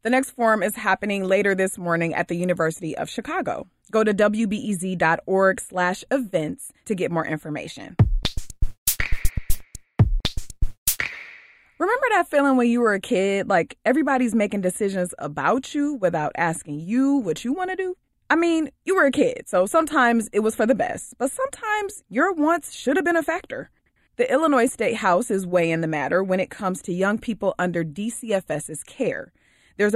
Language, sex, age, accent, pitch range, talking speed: English, female, 20-39, American, 175-245 Hz, 170 wpm